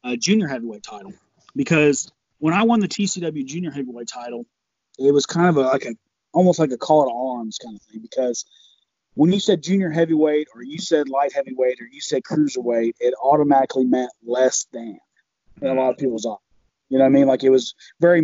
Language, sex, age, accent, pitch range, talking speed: English, male, 30-49, American, 125-155 Hz, 210 wpm